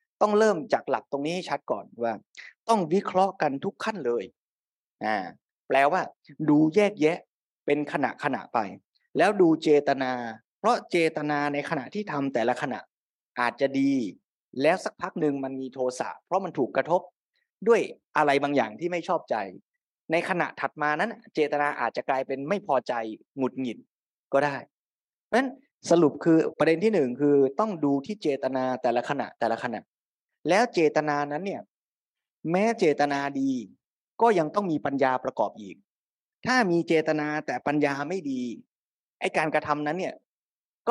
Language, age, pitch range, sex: Thai, 20-39, 140-195 Hz, male